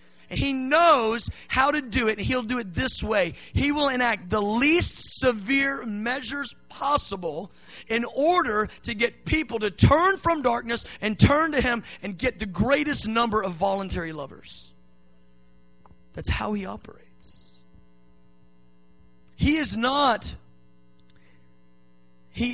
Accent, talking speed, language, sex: American, 130 wpm, English, male